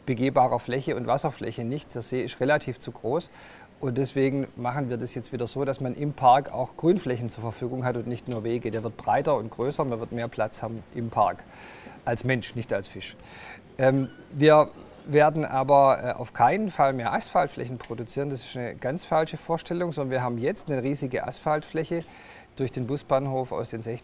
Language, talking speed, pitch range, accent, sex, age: German, 190 wpm, 120-145 Hz, German, male, 50-69